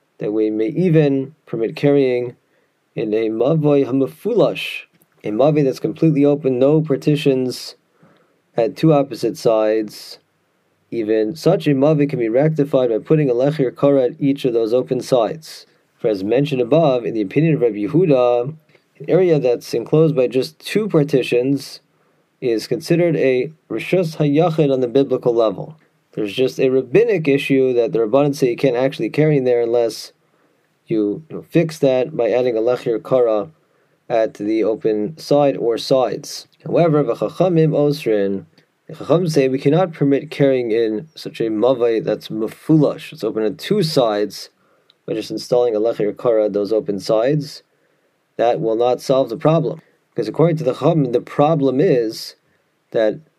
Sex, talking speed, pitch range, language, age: male, 160 wpm, 120-150 Hz, English, 30-49